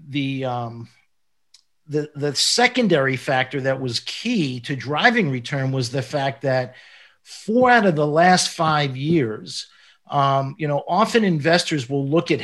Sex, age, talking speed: male, 50-69, 150 wpm